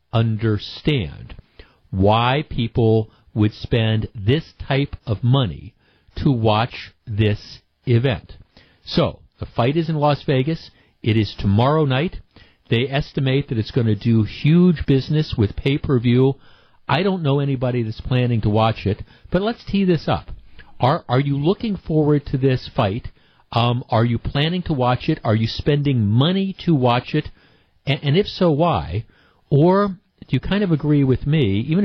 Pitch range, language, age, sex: 110-150 Hz, English, 50-69, male